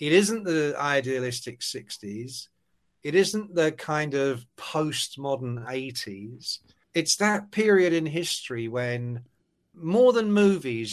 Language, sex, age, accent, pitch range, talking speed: English, male, 50-69, British, 120-165 Hz, 115 wpm